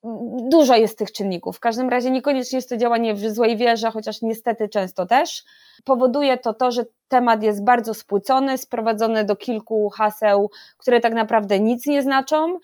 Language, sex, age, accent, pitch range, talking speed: Polish, female, 20-39, native, 205-235 Hz, 170 wpm